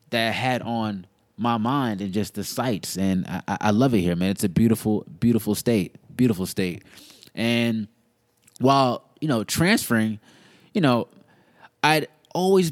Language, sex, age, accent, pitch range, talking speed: English, male, 20-39, American, 110-140 Hz, 155 wpm